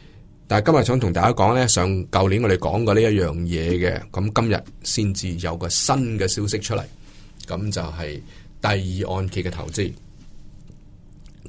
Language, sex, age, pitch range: Chinese, male, 20-39, 95-130 Hz